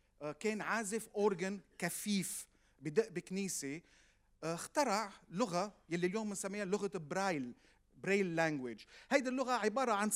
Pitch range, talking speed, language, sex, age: 160-225 Hz, 110 wpm, Arabic, male, 40-59